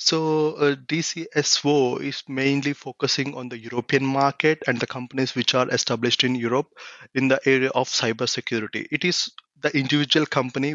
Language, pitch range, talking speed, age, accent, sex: English, 130-150 Hz, 155 wpm, 30-49, Indian, male